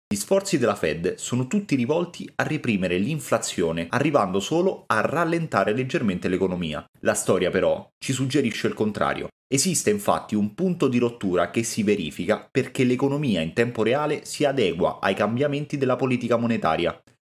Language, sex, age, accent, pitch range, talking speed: Italian, male, 30-49, native, 90-135 Hz, 155 wpm